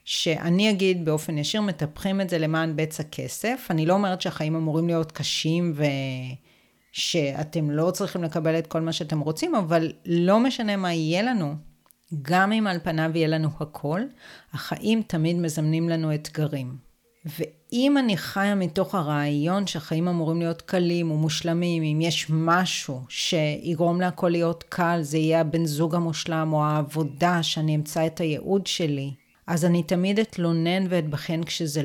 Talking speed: 150 wpm